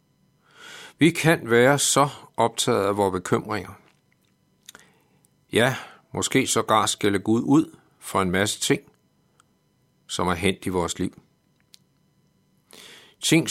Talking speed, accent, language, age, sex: 115 wpm, native, Danish, 60-79, male